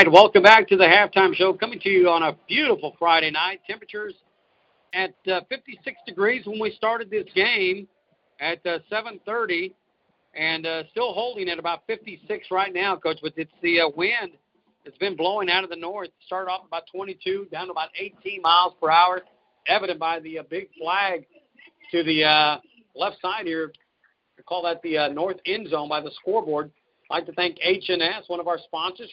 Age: 50-69